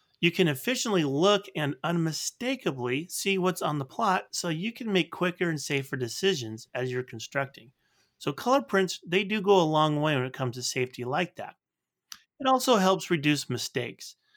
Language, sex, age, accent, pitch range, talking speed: English, male, 30-49, American, 130-185 Hz, 180 wpm